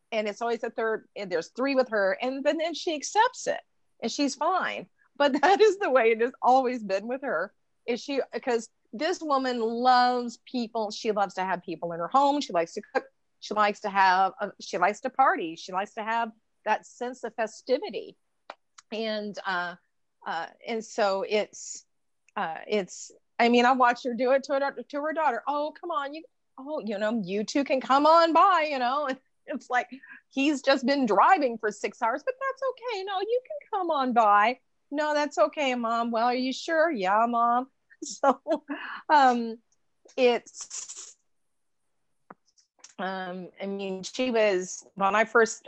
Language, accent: English, American